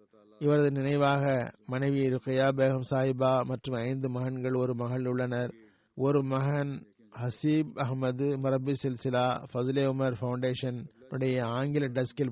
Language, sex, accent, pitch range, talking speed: Tamil, male, native, 125-135 Hz, 110 wpm